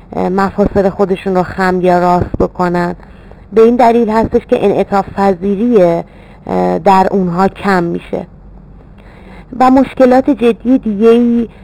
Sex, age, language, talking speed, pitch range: female, 30-49, Persian, 110 wpm, 185-205 Hz